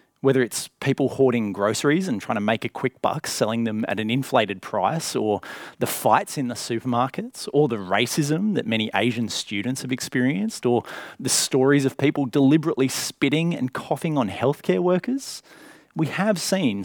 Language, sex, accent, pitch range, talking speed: English, male, Australian, 115-150 Hz, 170 wpm